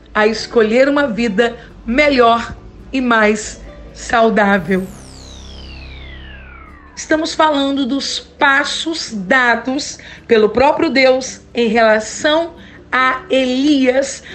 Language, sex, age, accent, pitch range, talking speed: Portuguese, female, 50-69, Brazilian, 240-290 Hz, 85 wpm